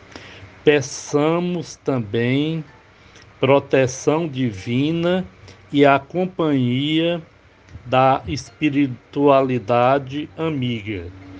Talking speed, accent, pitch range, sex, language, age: 55 wpm, Brazilian, 100-150 Hz, male, Portuguese, 60-79